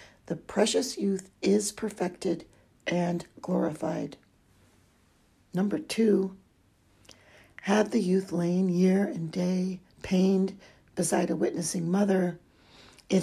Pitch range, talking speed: 155-195 Hz, 100 wpm